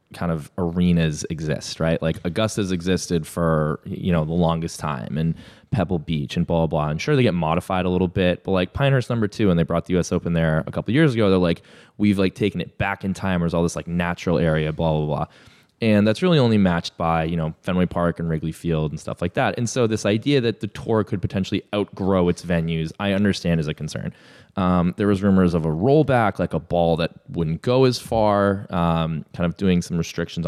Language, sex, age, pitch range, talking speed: English, male, 20-39, 80-105 Hz, 235 wpm